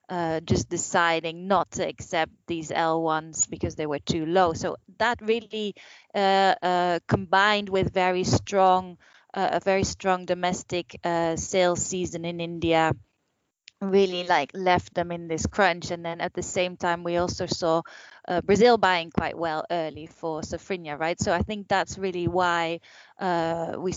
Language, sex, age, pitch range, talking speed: English, female, 20-39, 170-205 Hz, 165 wpm